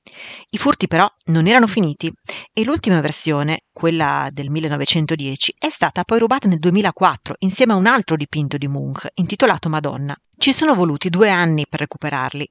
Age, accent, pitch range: 40-59, native, 155-220 Hz